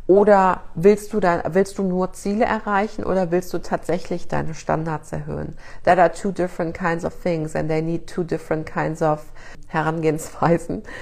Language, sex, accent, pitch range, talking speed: German, female, German, 165-190 Hz, 170 wpm